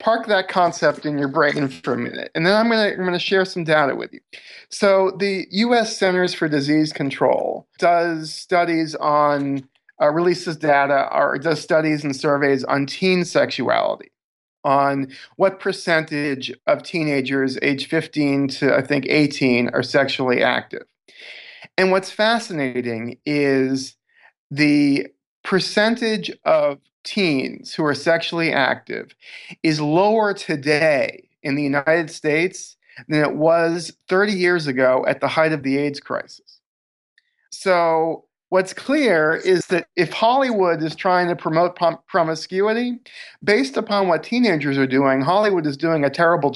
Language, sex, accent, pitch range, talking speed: English, male, American, 140-185 Hz, 140 wpm